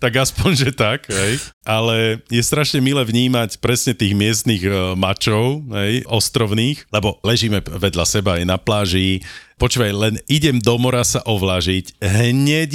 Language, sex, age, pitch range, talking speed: Slovak, male, 40-59, 100-130 Hz, 135 wpm